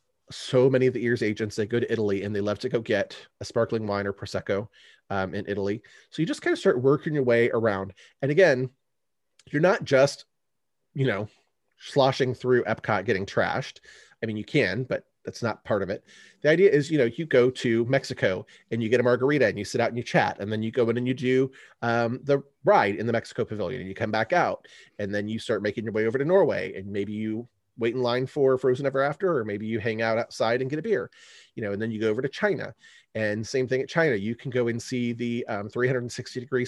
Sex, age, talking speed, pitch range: male, 30-49, 245 wpm, 110-130 Hz